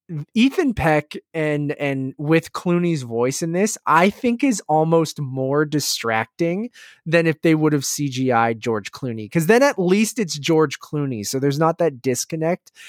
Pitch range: 135-180 Hz